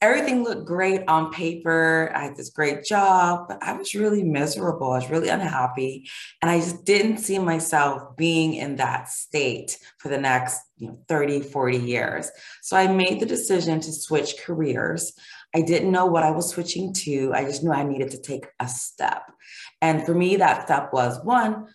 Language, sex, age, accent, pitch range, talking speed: English, female, 20-39, American, 155-185 Hz, 185 wpm